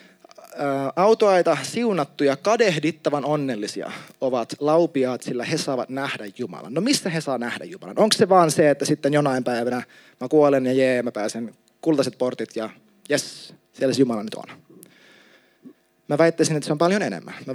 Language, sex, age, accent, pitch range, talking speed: Finnish, male, 30-49, native, 130-180 Hz, 170 wpm